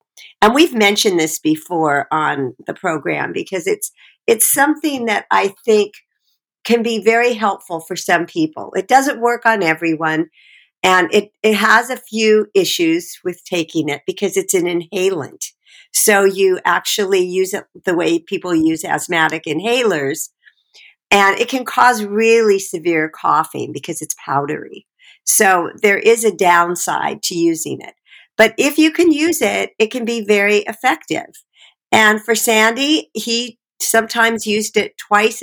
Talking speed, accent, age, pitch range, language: 150 wpm, American, 50-69, 190-260 Hz, English